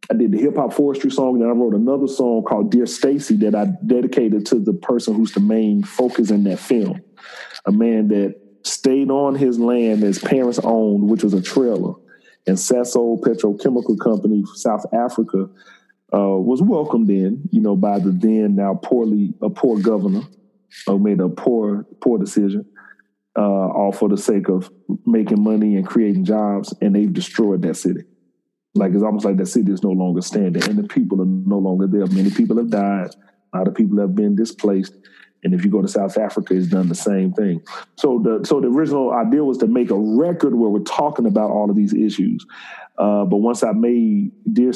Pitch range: 100-125 Hz